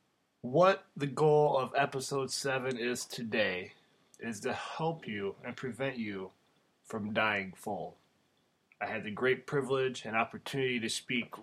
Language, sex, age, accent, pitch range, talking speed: English, male, 20-39, American, 110-135 Hz, 140 wpm